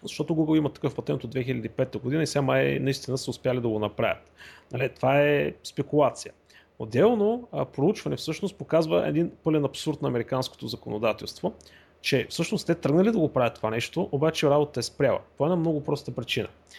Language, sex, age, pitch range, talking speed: Bulgarian, male, 30-49, 120-160 Hz, 180 wpm